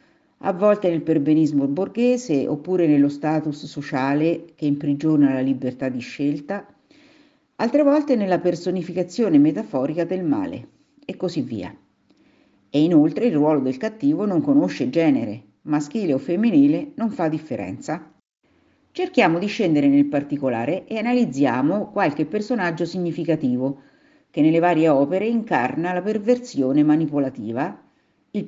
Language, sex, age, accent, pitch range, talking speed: Italian, female, 50-69, native, 145-245 Hz, 125 wpm